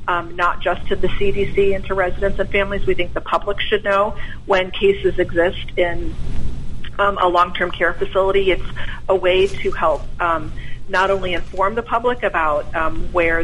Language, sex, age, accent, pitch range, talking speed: English, female, 40-59, American, 170-195 Hz, 180 wpm